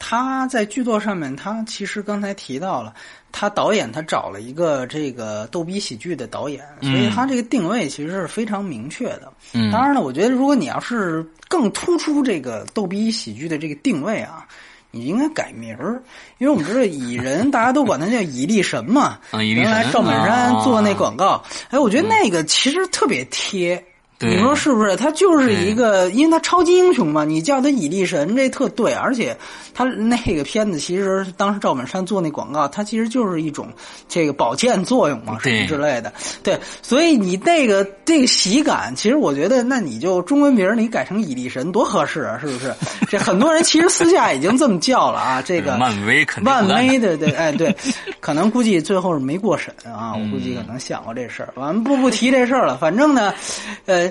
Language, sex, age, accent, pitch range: French, male, 30-49, Chinese, 180-270 Hz